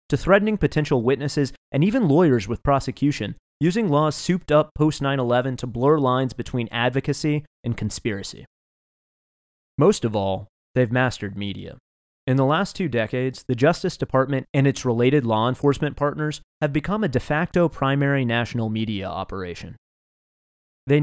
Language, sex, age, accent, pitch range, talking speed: English, male, 30-49, American, 110-145 Hz, 145 wpm